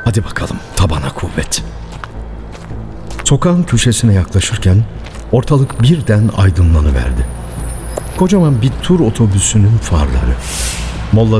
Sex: male